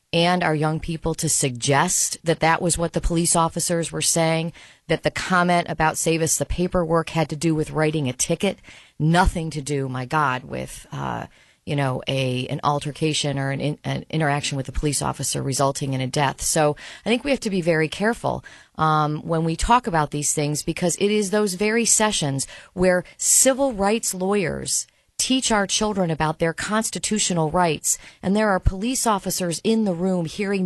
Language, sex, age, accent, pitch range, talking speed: English, female, 40-59, American, 155-195 Hz, 190 wpm